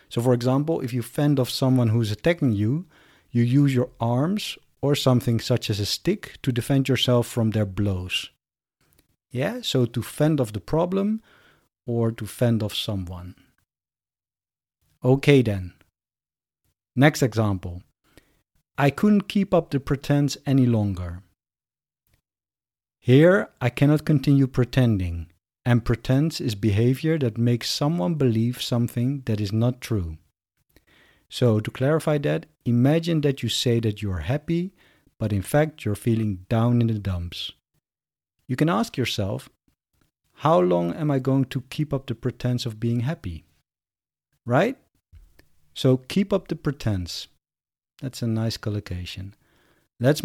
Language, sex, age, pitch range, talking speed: English, male, 50-69, 105-145 Hz, 145 wpm